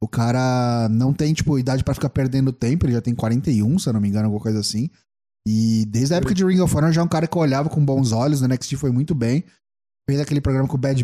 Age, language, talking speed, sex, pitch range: 20-39, Portuguese, 275 wpm, male, 125-170 Hz